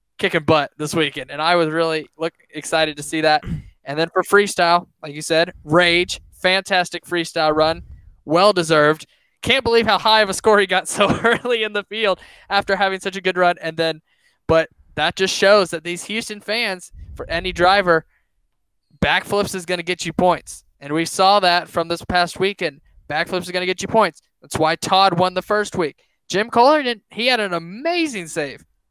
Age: 10-29